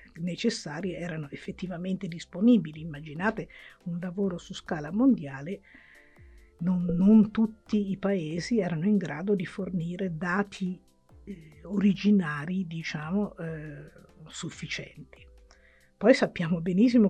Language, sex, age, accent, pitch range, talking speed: Italian, female, 50-69, native, 165-205 Hz, 100 wpm